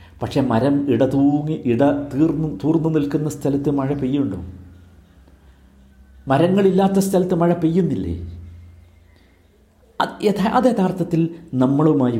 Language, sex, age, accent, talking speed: Malayalam, male, 50-69, native, 85 wpm